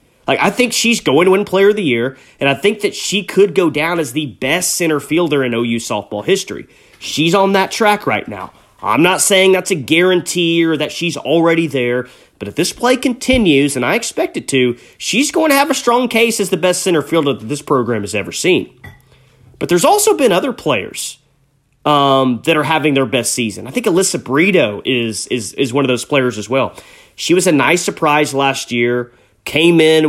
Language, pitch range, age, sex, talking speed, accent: English, 125-185 Hz, 30-49, male, 215 wpm, American